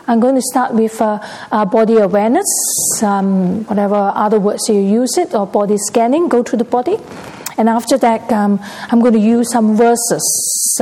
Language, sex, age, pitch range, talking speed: English, female, 40-59, 210-250 Hz, 185 wpm